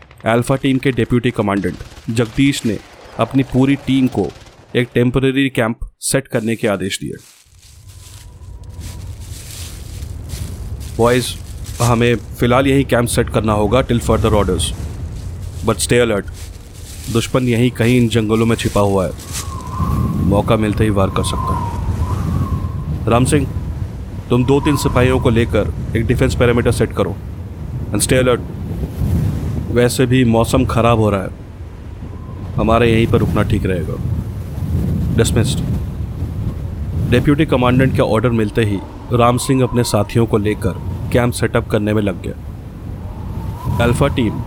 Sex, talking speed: male, 130 wpm